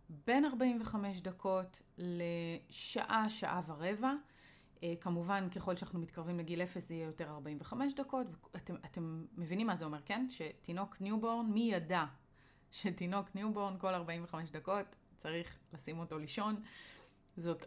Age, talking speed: 30-49, 130 wpm